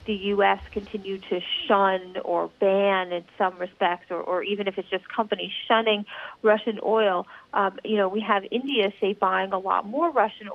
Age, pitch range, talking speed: 40-59, 190-230 Hz, 180 wpm